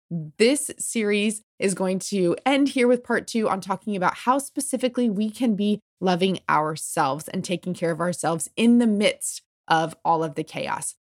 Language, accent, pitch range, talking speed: English, American, 175-235 Hz, 180 wpm